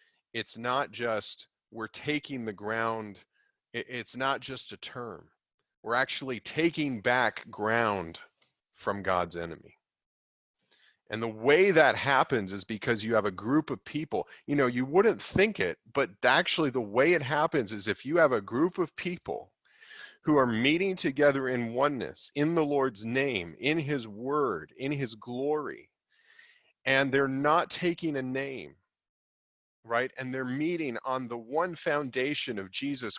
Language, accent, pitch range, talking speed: English, American, 100-145 Hz, 155 wpm